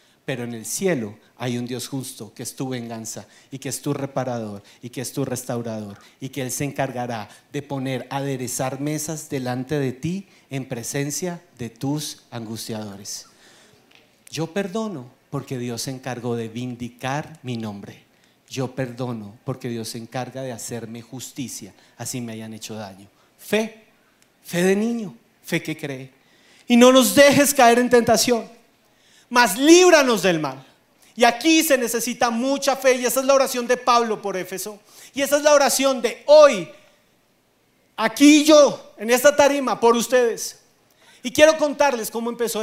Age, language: 40-59, Spanish